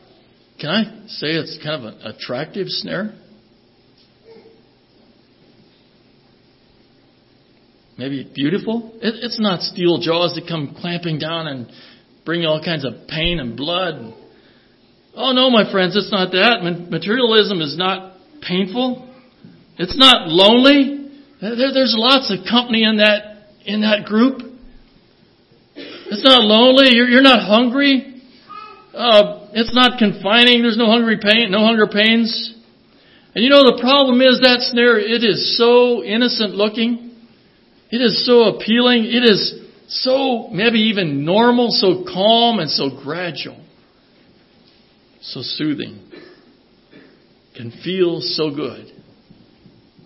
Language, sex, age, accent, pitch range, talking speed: English, male, 60-79, American, 165-240 Hz, 120 wpm